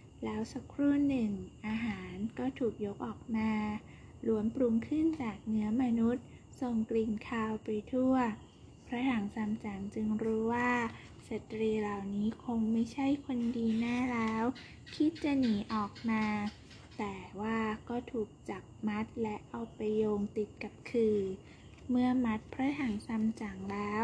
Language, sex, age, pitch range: Thai, female, 20-39, 215-245 Hz